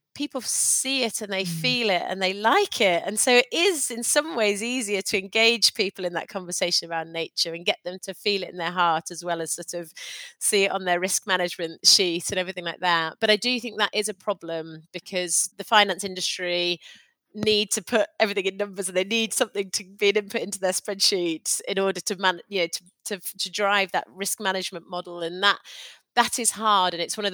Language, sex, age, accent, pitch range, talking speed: English, female, 30-49, British, 185-220 Hz, 225 wpm